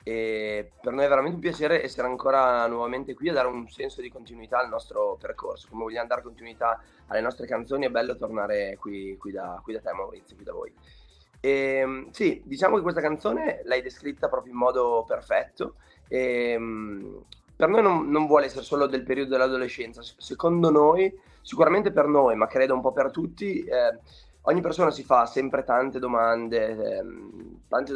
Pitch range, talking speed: 120-155 Hz, 165 wpm